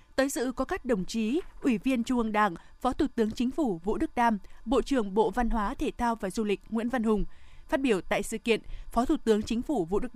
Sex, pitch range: female, 220-265 Hz